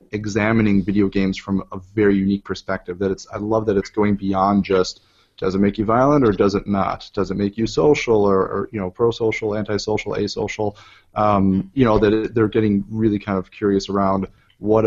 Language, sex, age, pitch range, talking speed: English, male, 30-49, 95-110 Hz, 200 wpm